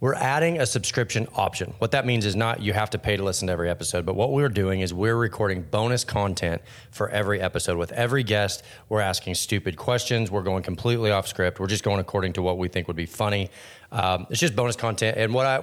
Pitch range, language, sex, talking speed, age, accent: 95-115 Hz, English, male, 240 wpm, 30-49, American